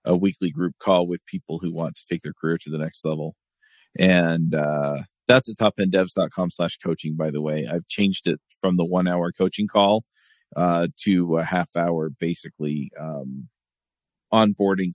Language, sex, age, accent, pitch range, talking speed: English, male, 40-59, American, 85-100 Hz, 175 wpm